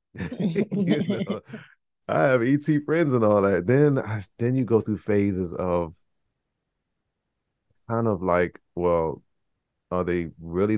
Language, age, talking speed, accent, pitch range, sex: English, 30-49, 135 wpm, American, 90-110 Hz, male